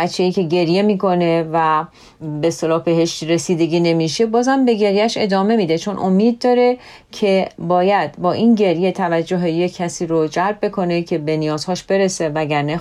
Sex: female